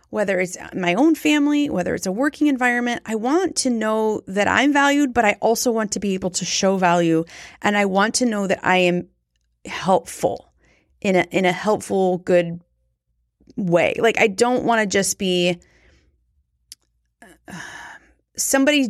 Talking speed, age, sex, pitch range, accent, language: 165 wpm, 30-49, female, 175-235 Hz, American, English